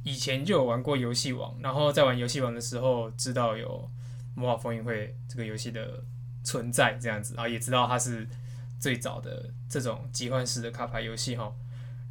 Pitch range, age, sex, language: 120-135 Hz, 20-39, male, Chinese